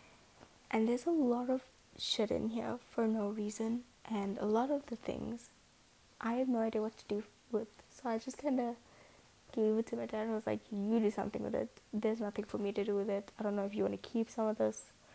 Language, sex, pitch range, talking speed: English, female, 215-260 Hz, 245 wpm